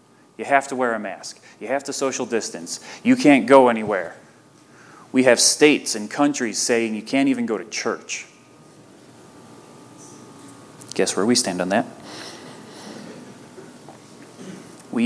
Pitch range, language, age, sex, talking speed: 105-125 Hz, English, 30-49, male, 135 wpm